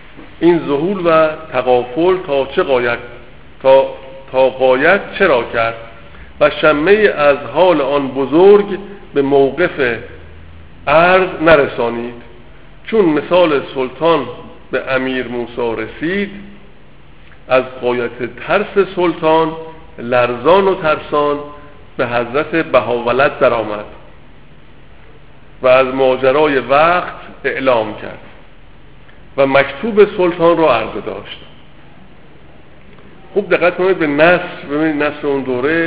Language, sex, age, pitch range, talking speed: Persian, male, 50-69, 125-160 Hz, 105 wpm